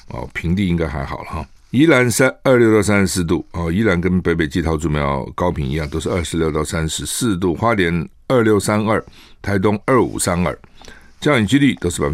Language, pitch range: Chinese, 80-105 Hz